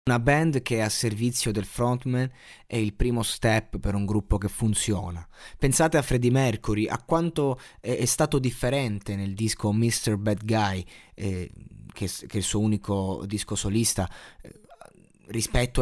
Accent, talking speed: native, 150 wpm